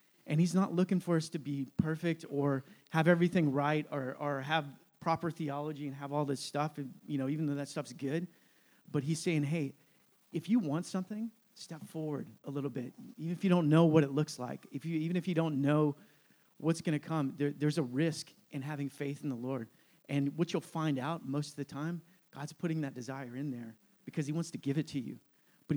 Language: English